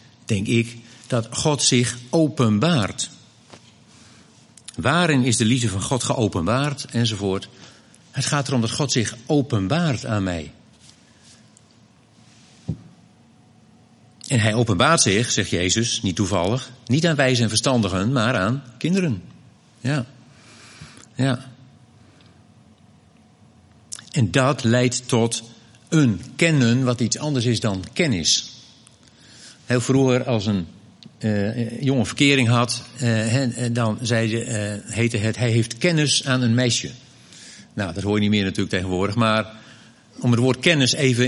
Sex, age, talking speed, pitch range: male, 50-69, 130 wpm, 110-130 Hz